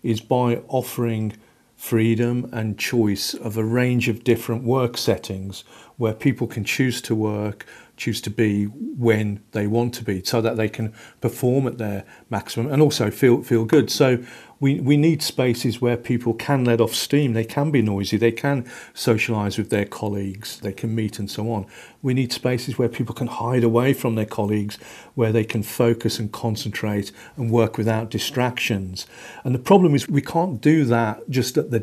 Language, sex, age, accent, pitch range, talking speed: English, male, 50-69, British, 110-135 Hz, 185 wpm